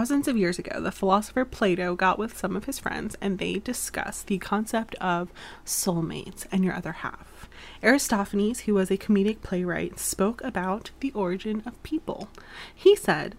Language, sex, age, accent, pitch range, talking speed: English, female, 20-39, American, 185-220 Hz, 170 wpm